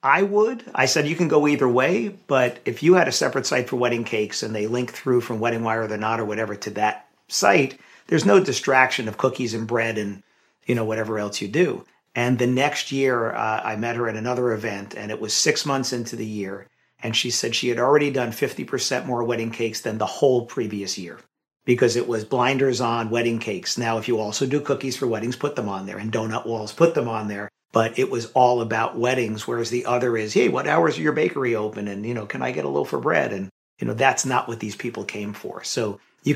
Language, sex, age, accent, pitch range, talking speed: English, male, 50-69, American, 115-135 Hz, 245 wpm